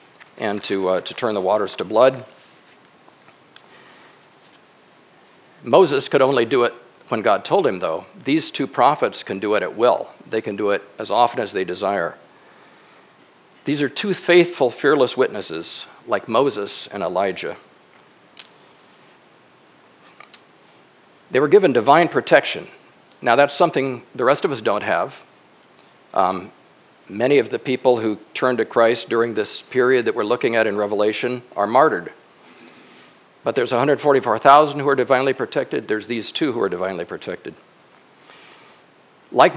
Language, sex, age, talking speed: English, male, 50-69, 145 wpm